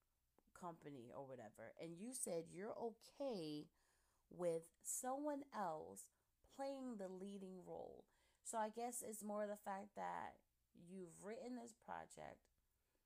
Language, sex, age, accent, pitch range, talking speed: English, female, 30-49, American, 155-205 Hz, 125 wpm